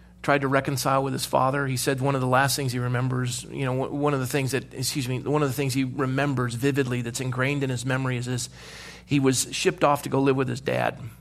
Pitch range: 120-140 Hz